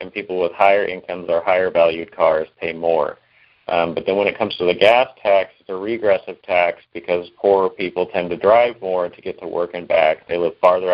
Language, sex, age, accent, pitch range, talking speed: English, male, 40-59, American, 85-105 Hz, 220 wpm